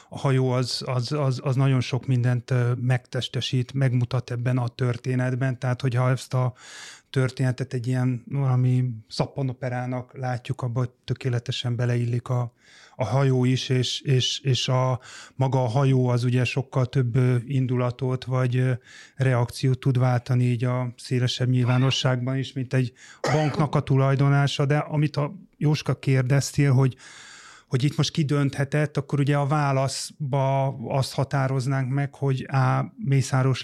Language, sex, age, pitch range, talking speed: Hungarian, male, 30-49, 125-135 Hz, 140 wpm